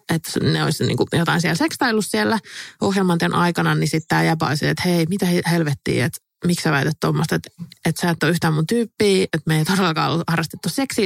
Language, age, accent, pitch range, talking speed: Finnish, 20-39, native, 165-205 Hz, 205 wpm